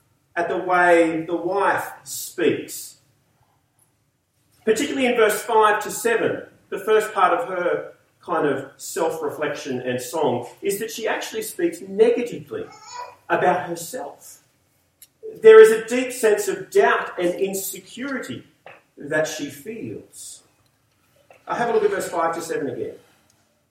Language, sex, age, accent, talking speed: English, male, 40-59, Australian, 130 wpm